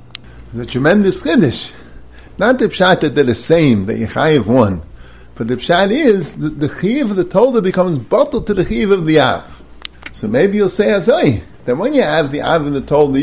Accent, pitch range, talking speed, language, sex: American, 125-200 Hz, 205 wpm, English, male